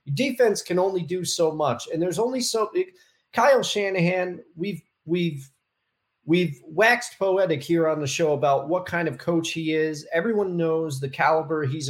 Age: 30-49